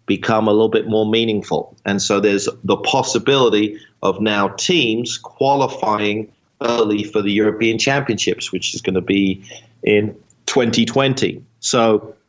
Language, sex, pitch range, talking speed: English, male, 105-120 Hz, 135 wpm